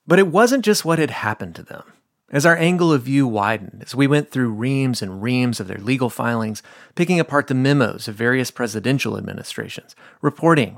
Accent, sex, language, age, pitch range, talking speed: American, male, English, 30-49, 125-170 Hz, 195 wpm